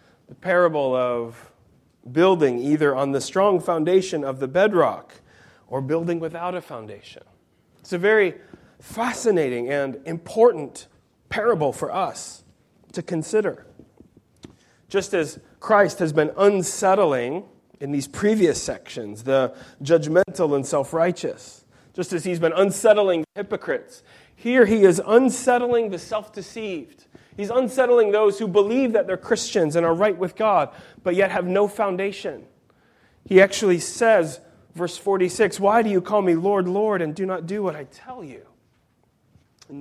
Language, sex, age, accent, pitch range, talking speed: English, male, 30-49, American, 150-200 Hz, 140 wpm